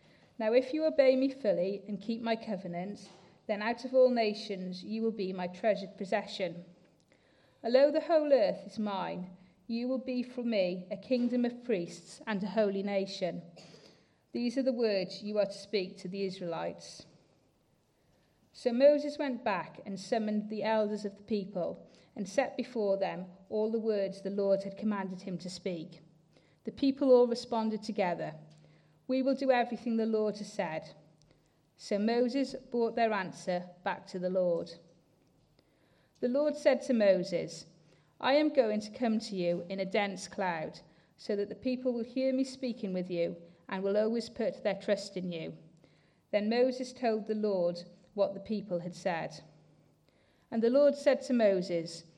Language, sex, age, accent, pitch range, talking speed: English, female, 40-59, British, 185-240 Hz, 170 wpm